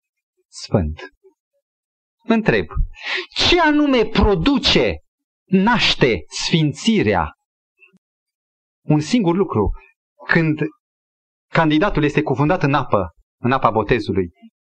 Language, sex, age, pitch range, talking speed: Romanian, male, 30-49, 145-240 Hz, 80 wpm